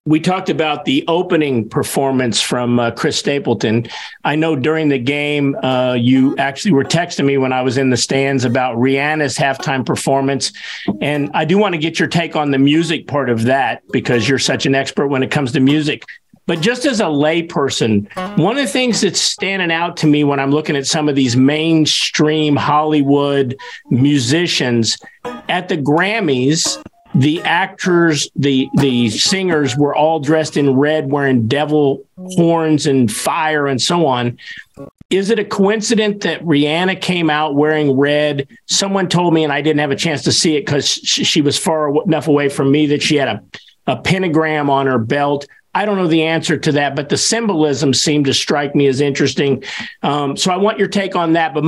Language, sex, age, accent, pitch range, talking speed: English, male, 50-69, American, 135-165 Hz, 190 wpm